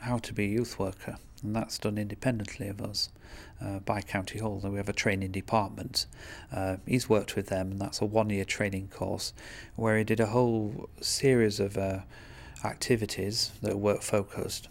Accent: British